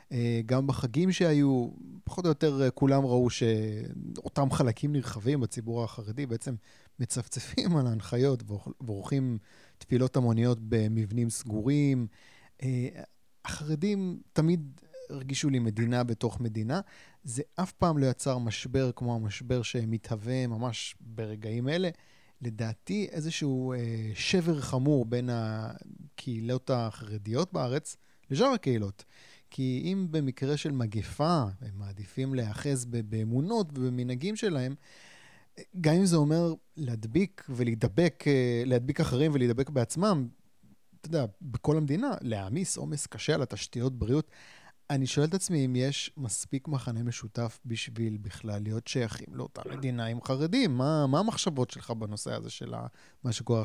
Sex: male